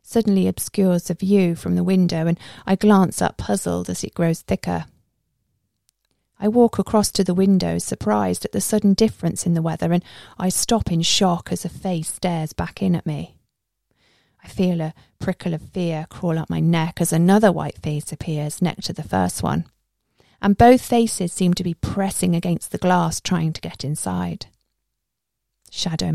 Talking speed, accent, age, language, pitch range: 180 wpm, British, 40-59, English, 120-190 Hz